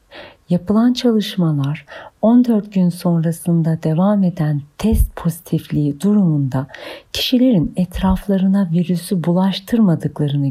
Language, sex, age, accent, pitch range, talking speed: Turkish, female, 50-69, native, 160-215 Hz, 80 wpm